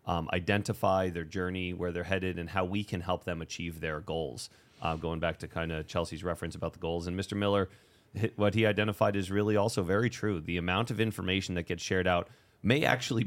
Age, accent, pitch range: 30-49, American, 90-105 Hz